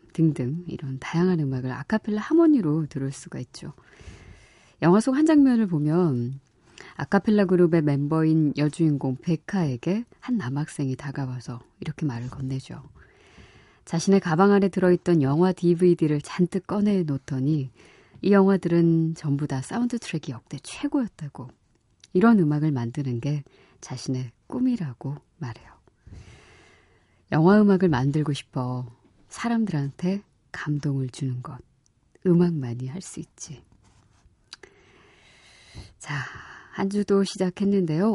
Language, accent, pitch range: Korean, native, 135-190 Hz